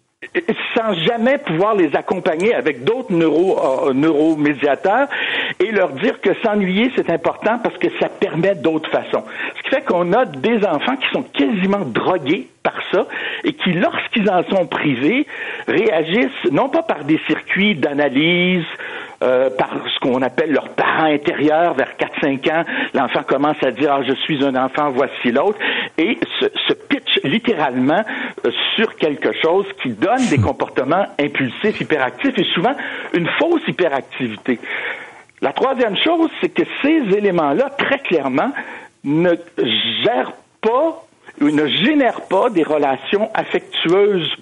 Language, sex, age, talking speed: French, male, 60-79, 145 wpm